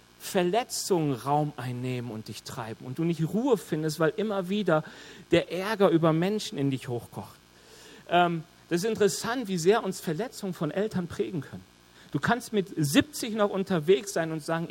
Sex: male